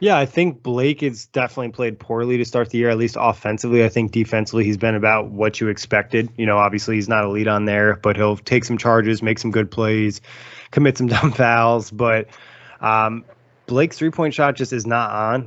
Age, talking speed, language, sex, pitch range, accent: 20-39, 215 wpm, English, male, 110-125 Hz, American